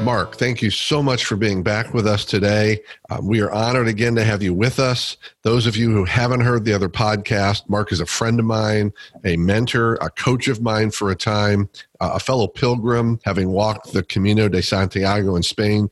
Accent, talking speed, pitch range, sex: American, 215 wpm, 100-120 Hz, male